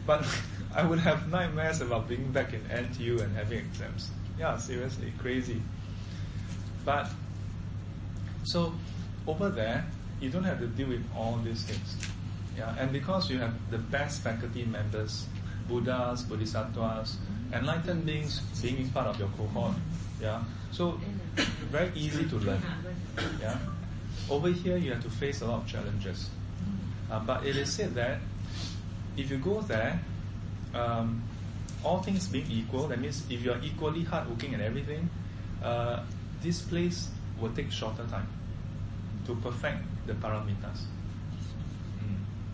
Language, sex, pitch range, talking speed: English, male, 100-120 Hz, 140 wpm